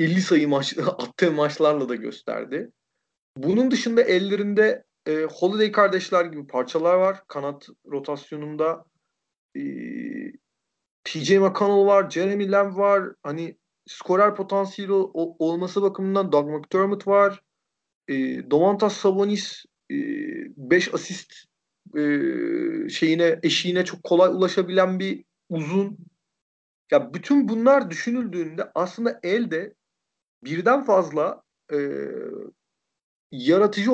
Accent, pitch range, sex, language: native, 165-215 Hz, male, Turkish